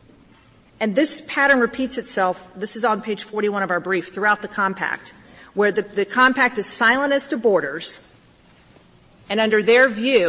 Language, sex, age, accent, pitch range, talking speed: English, female, 40-59, American, 185-225 Hz, 170 wpm